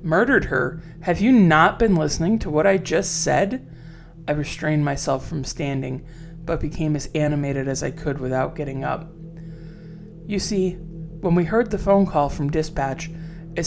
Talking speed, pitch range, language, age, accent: 165 wpm, 145-170 Hz, English, 20-39, American